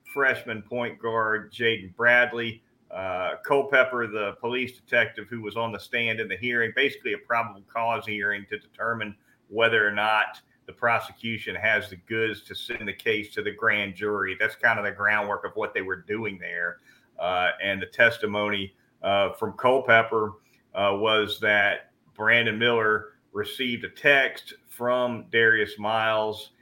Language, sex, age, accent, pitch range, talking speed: English, male, 40-59, American, 105-120 Hz, 155 wpm